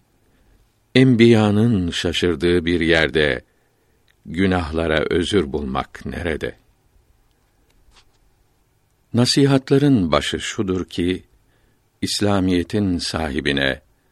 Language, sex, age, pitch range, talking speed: Turkish, male, 60-79, 85-115 Hz, 60 wpm